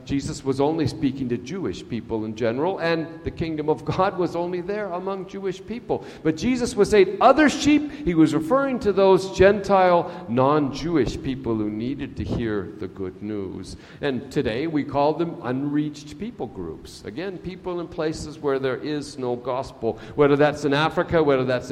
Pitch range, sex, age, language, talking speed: 130-205 Hz, male, 50-69, English, 175 wpm